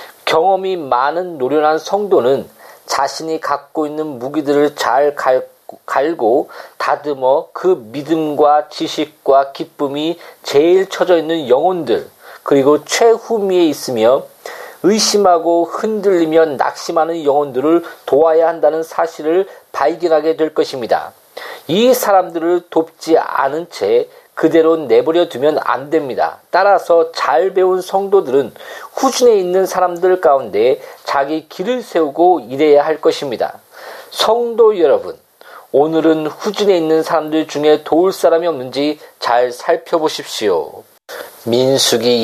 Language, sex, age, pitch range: Korean, male, 40-59, 150-200 Hz